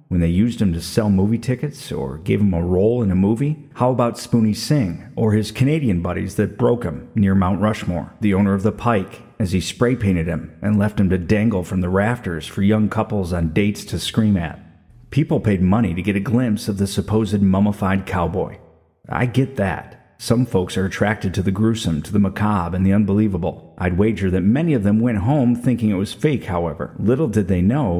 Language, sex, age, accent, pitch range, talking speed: English, male, 40-59, American, 95-120 Hz, 215 wpm